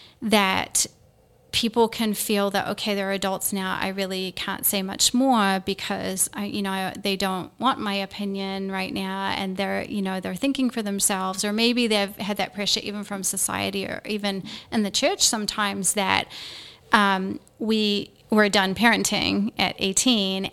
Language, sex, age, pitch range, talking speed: English, female, 30-49, 195-220 Hz, 165 wpm